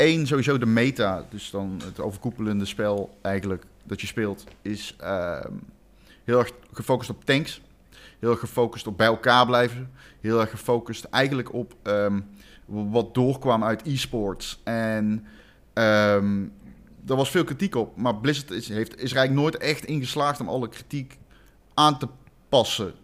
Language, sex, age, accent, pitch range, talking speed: Dutch, male, 30-49, Dutch, 110-125 Hz, 145 wpm